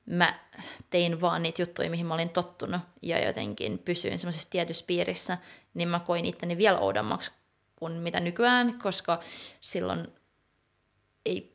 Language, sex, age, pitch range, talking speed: Finnish, female, 20-39, 170-200 Hz, 140 wpm